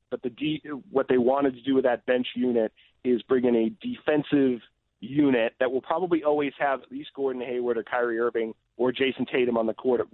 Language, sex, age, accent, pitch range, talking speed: English, male, 40-59, American, 115-135 Hz, 220 wpm